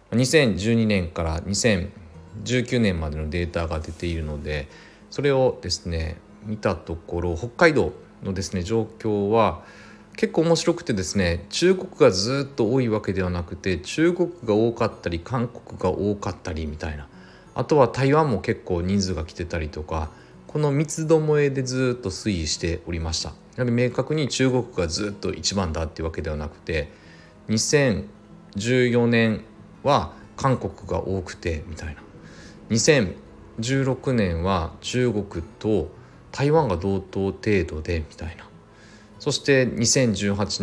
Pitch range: 85-120 Hz